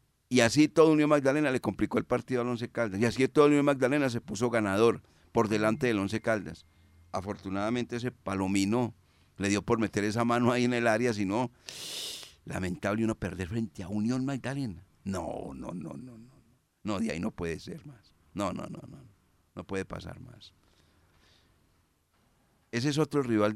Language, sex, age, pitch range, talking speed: Spanish, male, 50-69, 95-120 Hz, 180 wpm